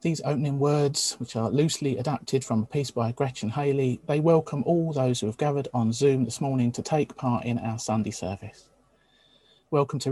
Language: English